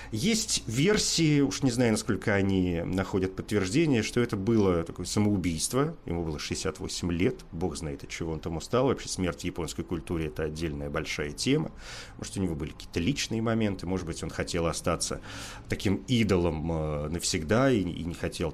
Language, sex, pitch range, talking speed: Russian, male, 85-120 Hz, 170 wpm